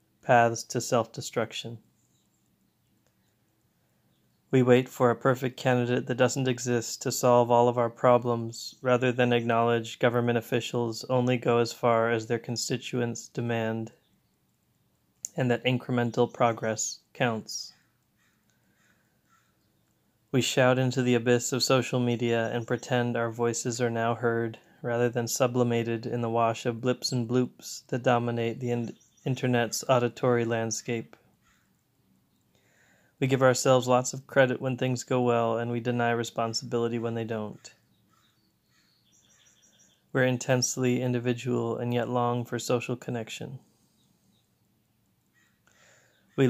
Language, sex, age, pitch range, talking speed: English, male, 20-39, 115-125 Hz, 125 wpm